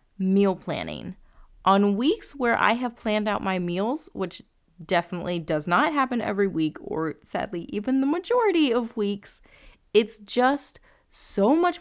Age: 30-49